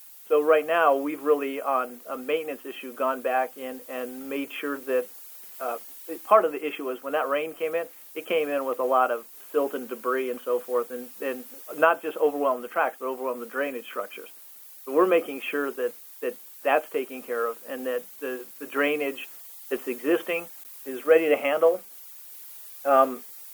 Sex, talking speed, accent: male, 190 wpm, American